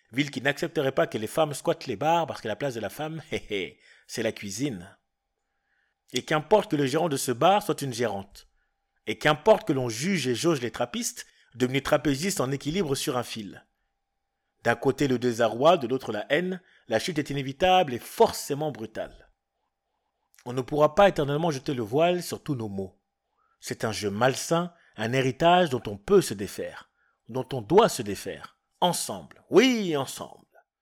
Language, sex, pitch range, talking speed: French, male, 120-175 Hz, 180 wpm